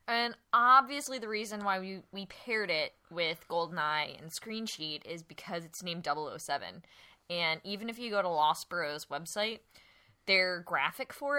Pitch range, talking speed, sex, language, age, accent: 180-235 Hz, 160 wpm, female, English, 20-39, American